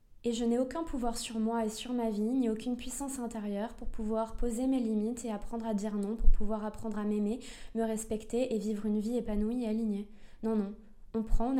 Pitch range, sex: 210-240 Hz, female